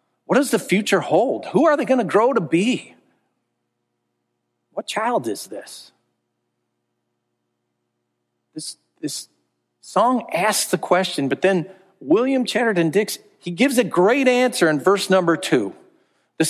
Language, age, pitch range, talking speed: English, 50-69, 155-225 Hz, 140 wpm